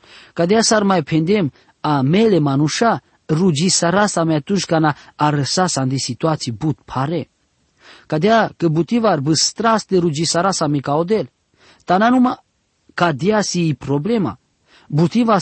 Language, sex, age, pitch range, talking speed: English, male, 40-59, 135-185 Hz, 130 wpm